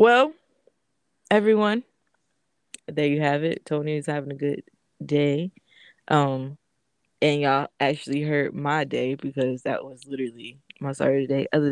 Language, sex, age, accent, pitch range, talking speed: English, female, 20-39, American, 145-180 Hz, 140 wpm